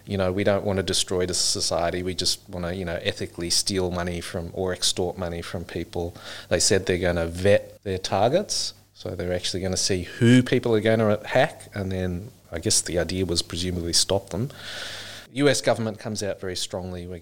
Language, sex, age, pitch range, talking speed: English, male, 30-49, 90-105 Hz, 215 wpm